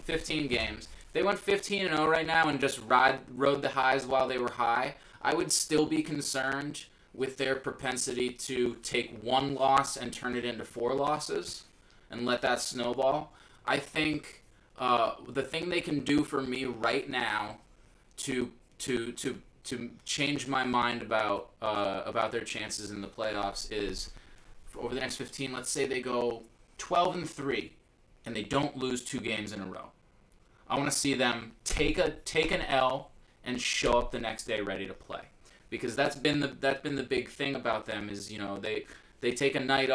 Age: 20-39